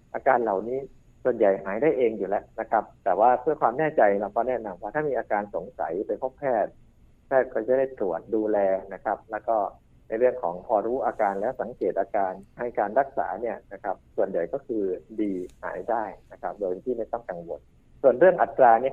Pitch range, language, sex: 110-140 Hz, Thai, male